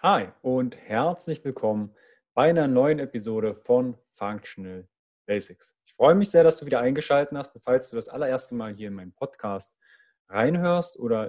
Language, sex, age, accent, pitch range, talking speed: German, male, 30-49, German, 110-175 Hz, 170 wpm